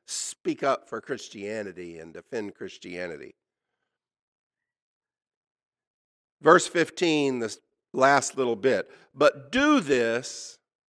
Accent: American